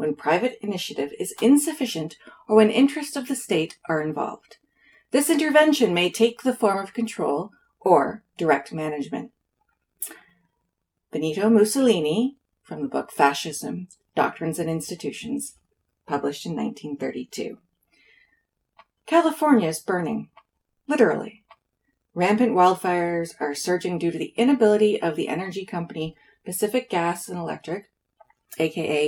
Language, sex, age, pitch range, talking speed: English, female, 30-49, 165-240 Hz, 120 wpm